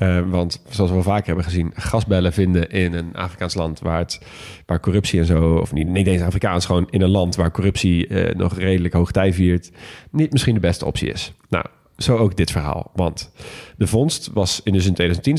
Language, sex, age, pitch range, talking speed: Dutch, male, 40-59, 90-110 Hz, 210 wpm